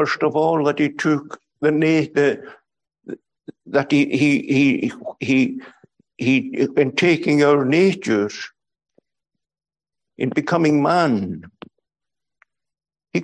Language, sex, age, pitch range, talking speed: English, male, 60-79, 135-170 Hz, 100 wpm